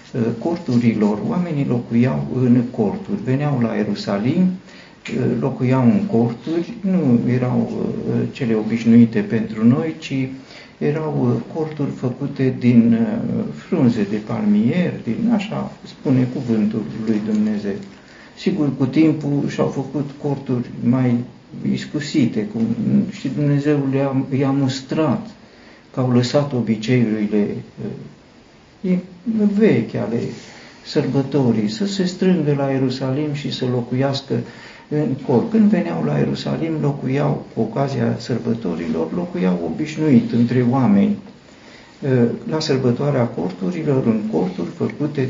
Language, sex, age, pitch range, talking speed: Romanian, male, 60-79, 120-155 Hz, 105 wpm